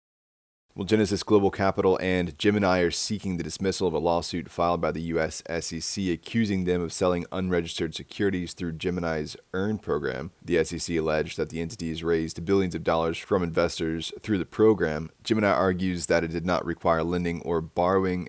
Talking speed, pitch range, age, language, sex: 175 wpm, 80-95 Hz, 20-39, English, male